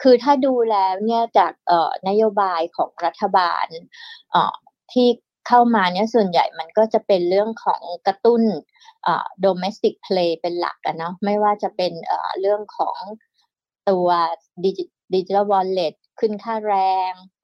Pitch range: 190-230 Hz